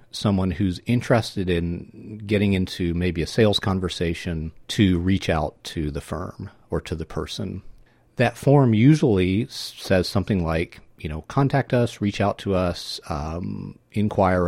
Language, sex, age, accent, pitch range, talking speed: English, male, 40-59, American, 85-115 Hz, 150 wpm